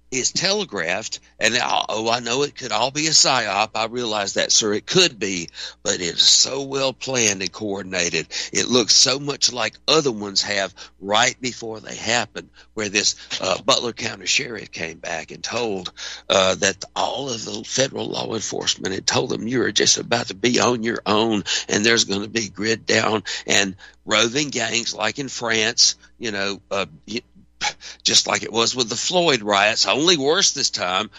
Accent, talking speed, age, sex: American, 185 wpm, 60-79, male